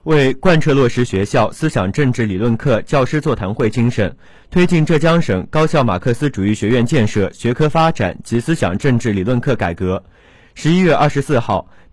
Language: Chinese